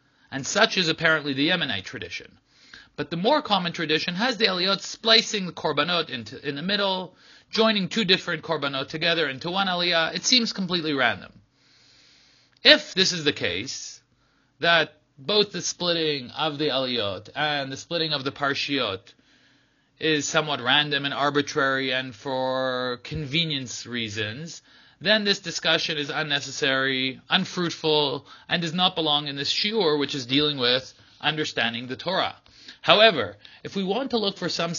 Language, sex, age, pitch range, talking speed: English, male, 30-49, 140-175 Hz, 150 wpm